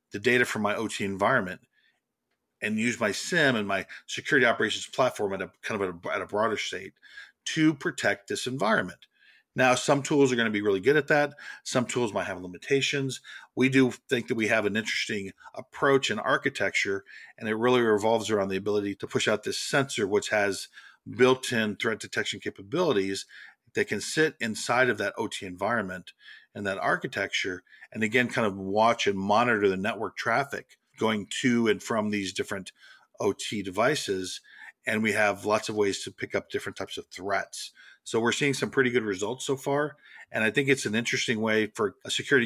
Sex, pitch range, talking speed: male, 105-130 Hz, 190 wpm